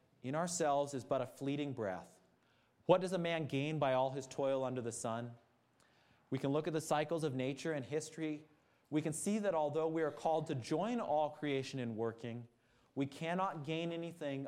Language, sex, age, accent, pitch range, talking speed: English, male, 30-49, American, 115-150 Hz, 195 wpm